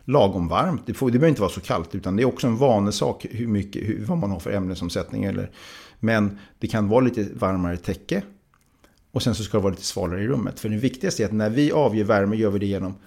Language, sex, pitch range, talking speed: Swedish, male, 100-120 Hz, 255 wpm